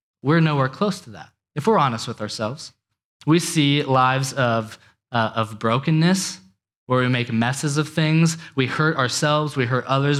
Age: 20-39